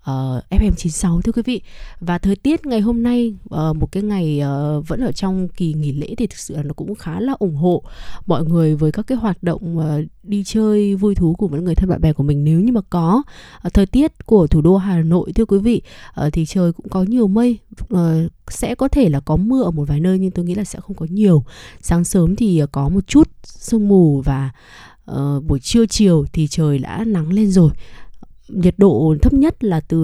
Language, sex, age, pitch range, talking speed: Vietnamese, female, 20-39, 160-205 Hz, 240 wpm